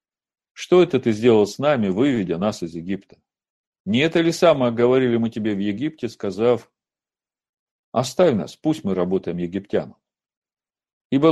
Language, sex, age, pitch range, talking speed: Russian, male, 50-69, 100-145 Hz, 145 wpm